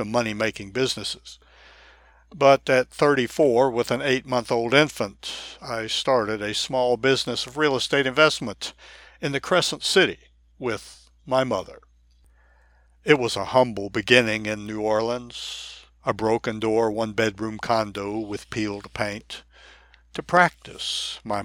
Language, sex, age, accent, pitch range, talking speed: English, male, 60-79, American, 105-125 Hz, 125 wpm